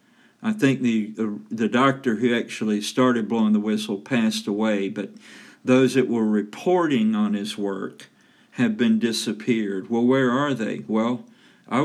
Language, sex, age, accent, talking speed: English, male, 50-69, American, 150 wpm